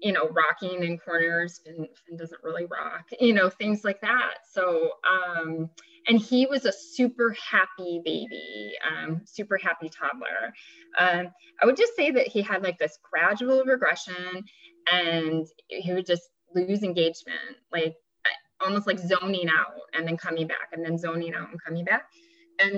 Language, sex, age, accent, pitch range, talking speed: English, female, 20-39, American, 165-210 Hz, 165 wpm